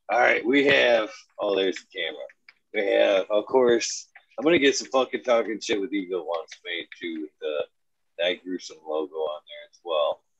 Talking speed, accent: 190 wpm, American